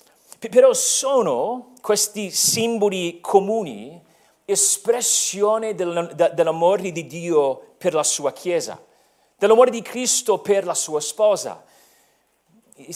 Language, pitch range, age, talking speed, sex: Italian, 175-225 Hz, 40-59, 95 wpm, male